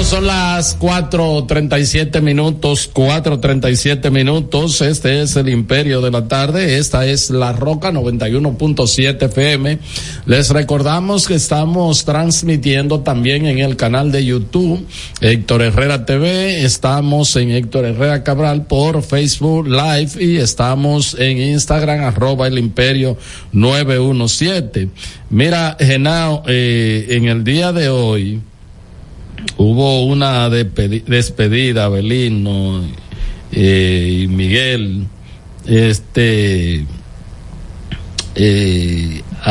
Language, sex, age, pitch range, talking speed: Spanish, male, 50-69, 105-145 Hz, 110 wpm